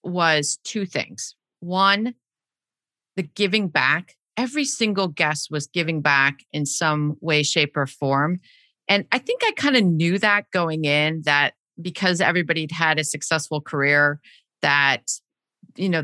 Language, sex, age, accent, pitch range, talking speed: English, female, 40-59, American, 155-195 Hz, 145 wpm